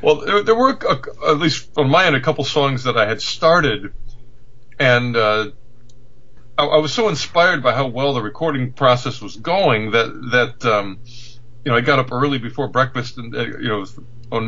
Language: English